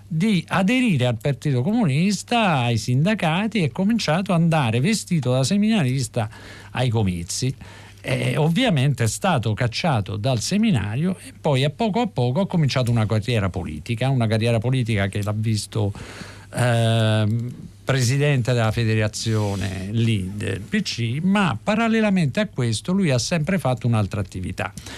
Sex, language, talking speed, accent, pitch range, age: male, Italian, 135 wpm, native, 110-180 Hz, 50-69